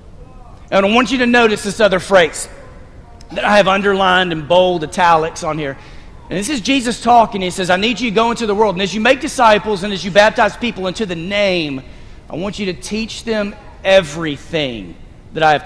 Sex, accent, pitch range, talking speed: male, American, 145-215 Hz, 215 wpm